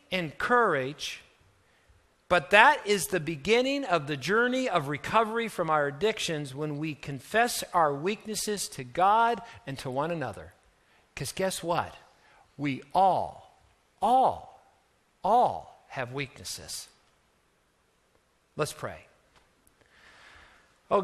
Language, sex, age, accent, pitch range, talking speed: English, male, 50-69, American, 140-190 Hz, 105 wpm